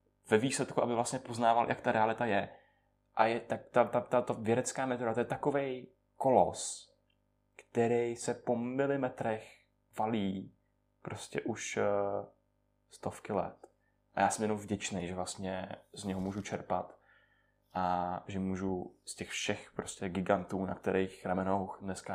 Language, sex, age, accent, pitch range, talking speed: Czech, male, 20-39, native, 90-110 Hz, 145 wpm